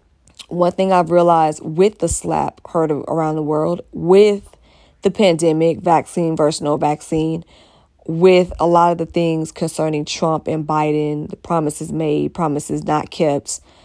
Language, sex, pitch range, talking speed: English, female, 150-180 Hz, 145 wpm